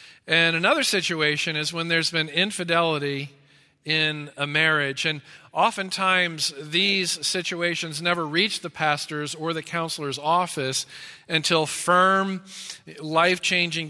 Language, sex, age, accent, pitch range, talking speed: English, male, 40-59, American, 150-185 Hz, 110 wpm